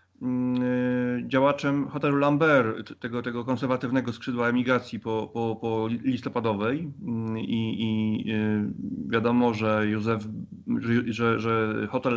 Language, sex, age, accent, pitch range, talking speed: Polish, male, 30-49, native, 110-130 Hz, 100 wpm